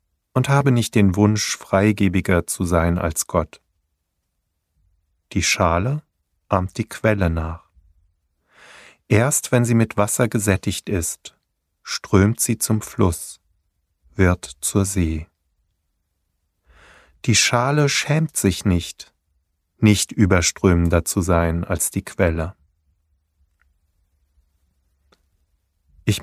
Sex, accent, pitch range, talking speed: male, German, 80-110 Hz, 100 wpm